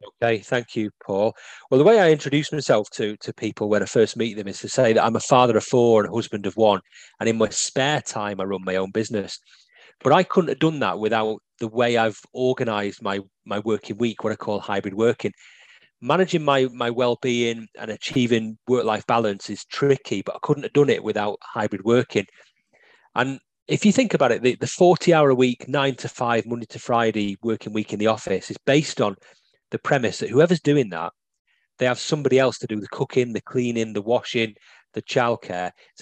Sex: male